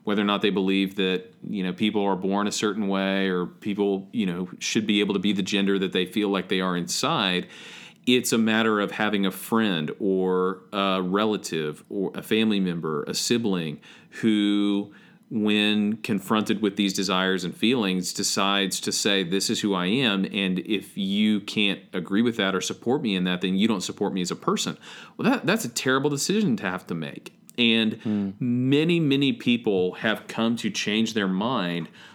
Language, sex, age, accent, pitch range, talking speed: English, male, 40-59, American, 95-115 Hz, 190 wpm